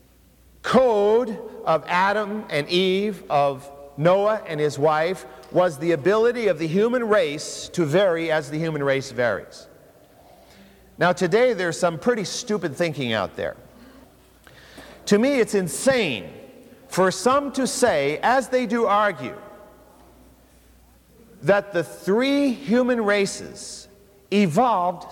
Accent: American